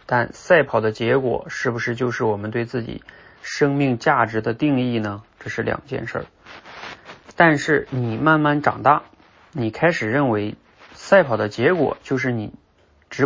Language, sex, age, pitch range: Chinese, male, 20-39, 115-150 Hz